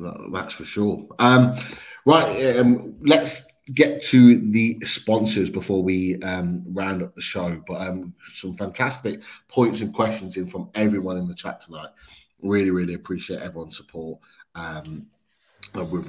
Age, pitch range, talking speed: 30-49, 95-115 Hz, 145 wpm